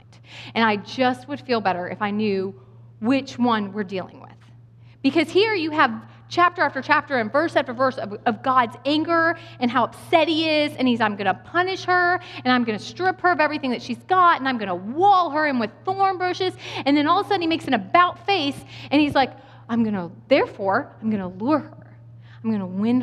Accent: American